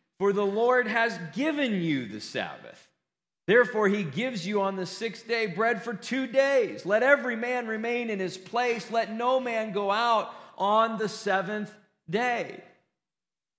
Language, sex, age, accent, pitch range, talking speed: English, male, 40-59, American, 200-245 Hz, 160 wpm